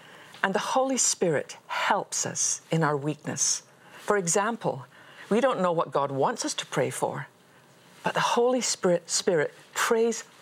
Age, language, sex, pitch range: 50-69, English, female, 160-210 Hz